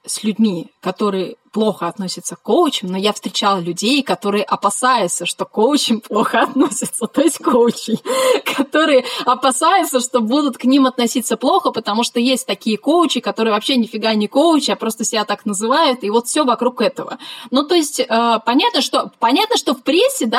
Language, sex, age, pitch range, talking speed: Russian, female, 20-39, 220-270 Hz, 160 wpm